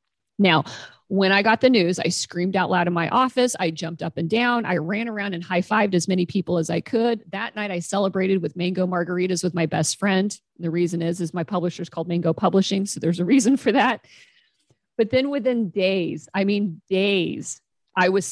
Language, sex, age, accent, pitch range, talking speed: English, female, 40-59, American, 170-210 Hz, 215 wpm